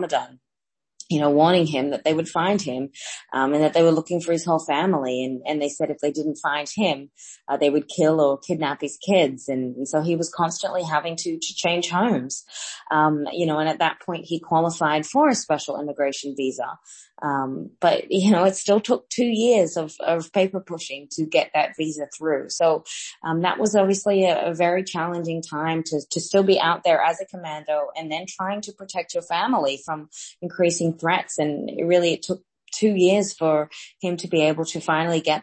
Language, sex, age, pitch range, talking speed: English, female, 20-39, 150-180 Hz, 210 wpm